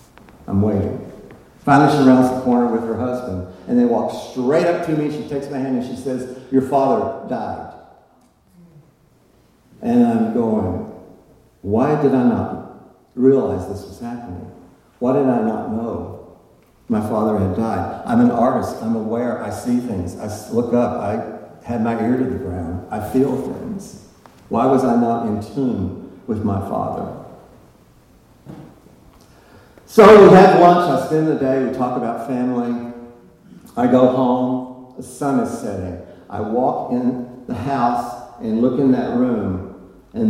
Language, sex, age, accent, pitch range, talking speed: English, male, 60-79, American, 100-130 Hz, 160 wpm